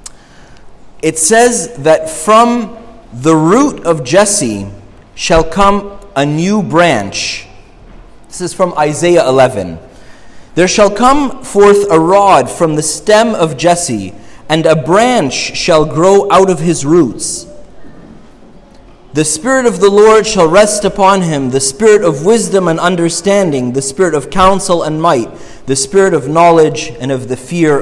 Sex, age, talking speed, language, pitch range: male, 30-49, 145 wpm, English, 155-205 Hz